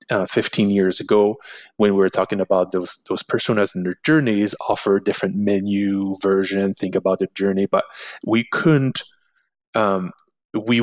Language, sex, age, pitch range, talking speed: English, male, 30-49, 95-115 Hz, 155 wpm